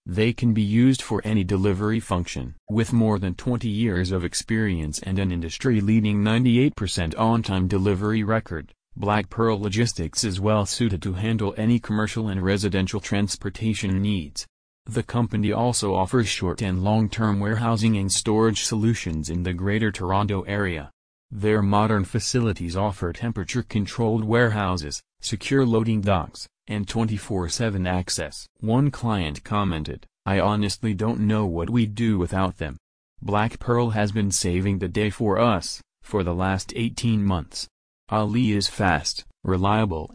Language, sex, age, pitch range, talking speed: English, male, 30-49, 95-110 Hz, 140 wpm